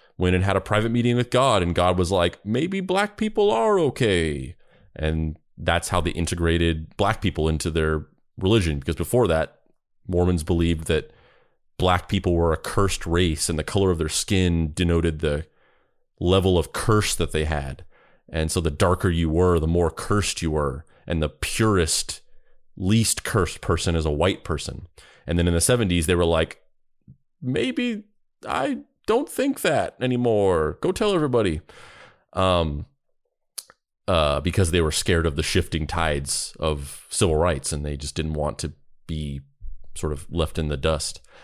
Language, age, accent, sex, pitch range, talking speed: English, 30-49, American, male, 80-115 Hz, 170 wpm